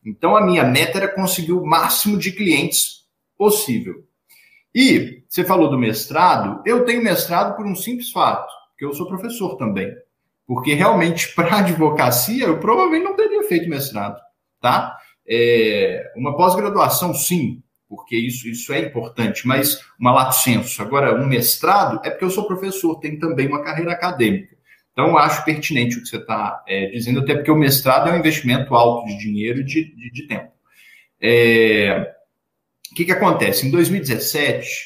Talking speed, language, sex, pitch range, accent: 165 wpm, Portuguese, male, 130-185 Hz, Brazilian